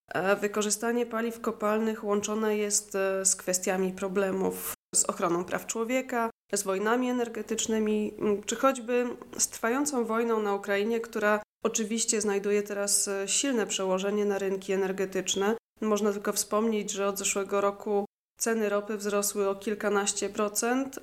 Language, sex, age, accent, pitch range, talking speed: Polish, female, 20-39, native, 200-235 Hz, 125 wpm